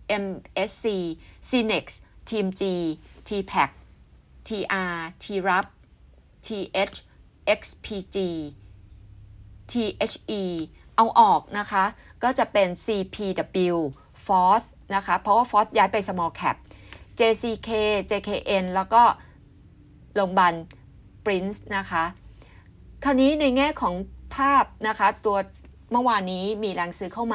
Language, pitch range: Thai, 165-210 Hz